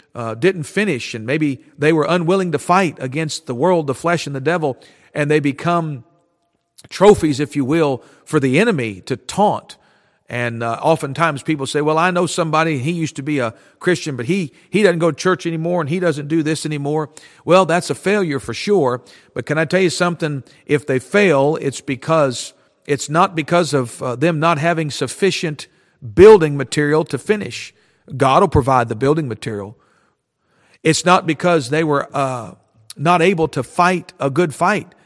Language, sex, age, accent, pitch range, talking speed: English, male, 50-69, American, 135-175 Hz, 185 wpm